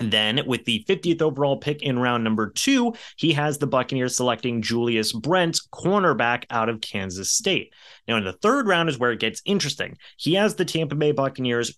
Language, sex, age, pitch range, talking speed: English, male, 30-49, 110-145 Hz, 200 wpm